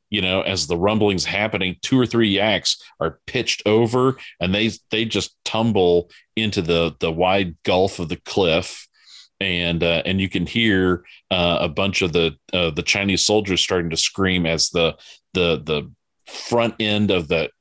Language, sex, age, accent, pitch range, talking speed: English, male, 40-59, American, 85-105 Hz, 175 wpm